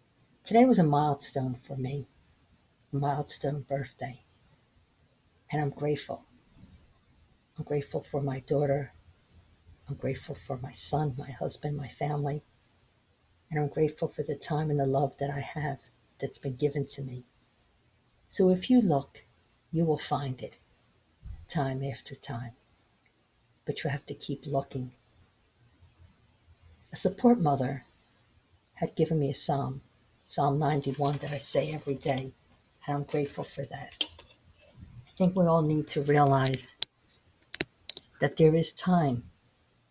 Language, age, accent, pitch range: English, 50-69, American, 120-150 Hz